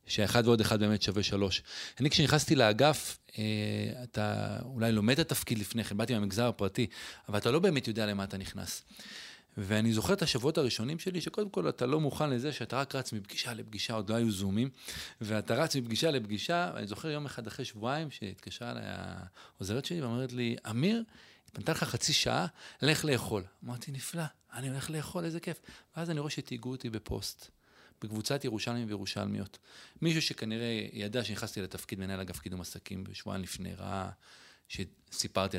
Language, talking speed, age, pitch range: Hebrew, 150 wpm, 30-49, 105-145 Hz